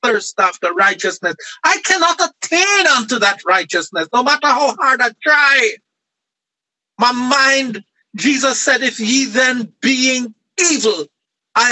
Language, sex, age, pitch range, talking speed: English, male, 50-69, 215-270 Hz, 130 wpm